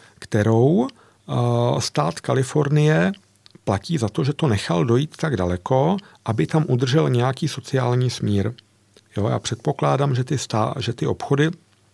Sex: male